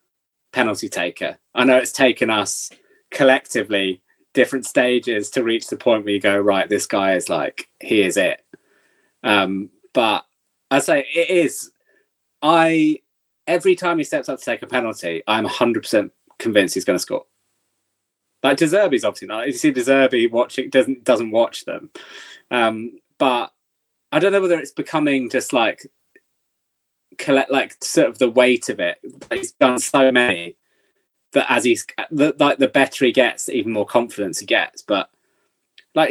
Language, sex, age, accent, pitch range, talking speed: English, male, 20-39, British, 120-170 Hz, 170 wpm